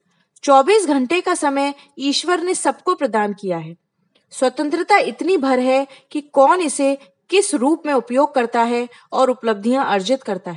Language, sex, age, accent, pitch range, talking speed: Hindi, female, 20-39, native, 225-300 Hz, 155 wpm